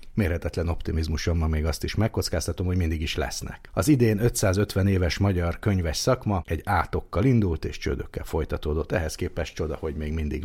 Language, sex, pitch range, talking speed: Hungarian, male, 80-100 Hz, 165 wpm